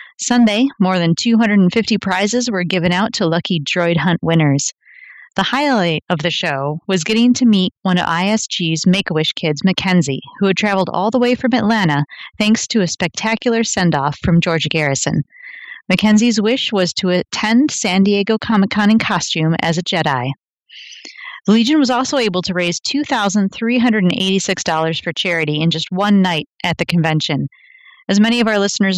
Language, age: English, 30-49